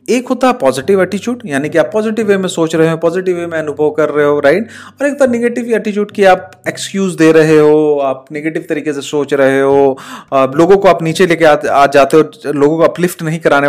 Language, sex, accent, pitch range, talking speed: Hindi, male, native, 150-215 Hz, 230 wpm